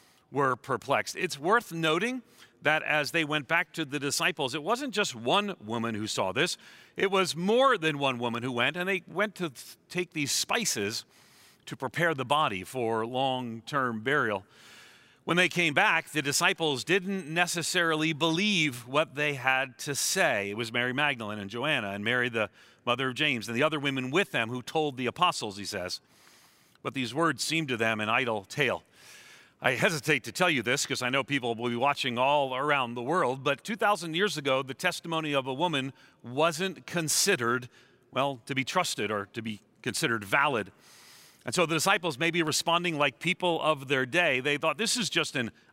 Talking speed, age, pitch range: 190 wpm, 40-59, 125-165 Hz